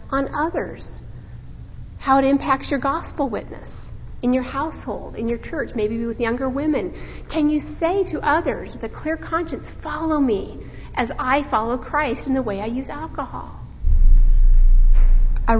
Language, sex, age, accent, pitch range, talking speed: English, female, 40-59, American, 225-290 Hz, 155 wpm